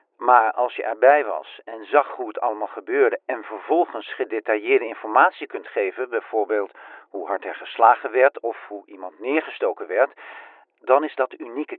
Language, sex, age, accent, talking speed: Dutch, male, 50-69, Dutch, 165 wpm